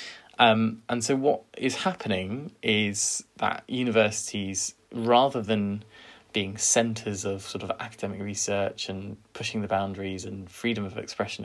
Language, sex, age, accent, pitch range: Chinese, male, 20-39, British, 100-115 Hz